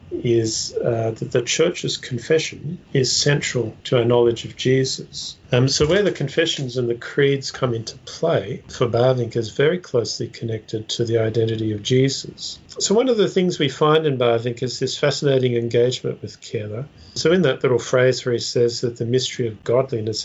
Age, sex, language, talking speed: 50-69, male, English, 185 wpm